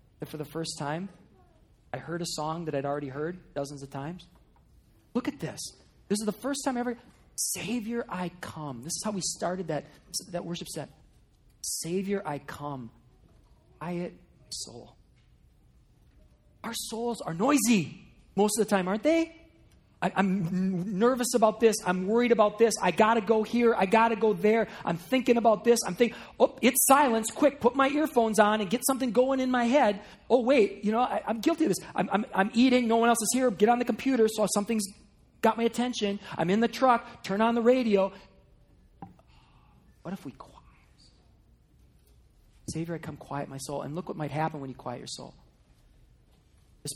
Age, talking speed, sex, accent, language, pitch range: 40-59, 185 wpm, male, American, English, 160-235 Hz